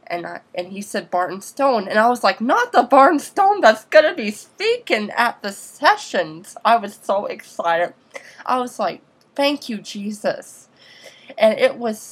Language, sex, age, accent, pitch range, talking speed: English, female, 20-39, American, 180-220 Hz, 180 wpm